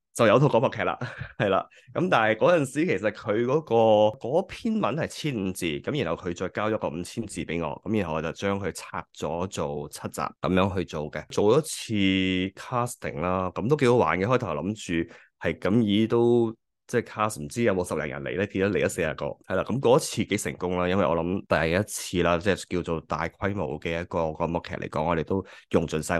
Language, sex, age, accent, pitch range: Chinese, male, 20-39, native, 85-110 Hz